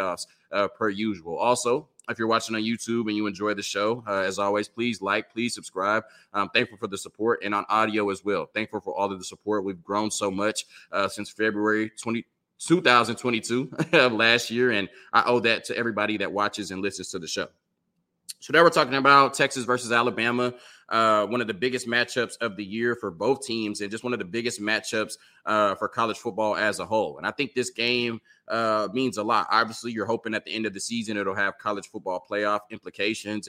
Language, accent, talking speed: English, American, 215 wpm